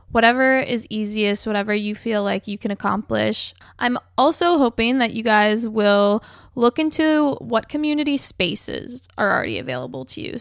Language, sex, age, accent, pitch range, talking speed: English, female, 10-29, American, 205-245 Hz, 155 wpm